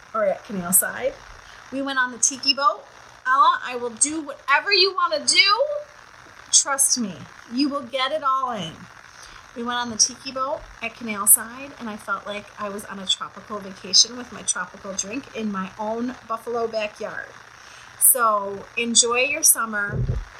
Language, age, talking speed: English, 30-49, 175 wpm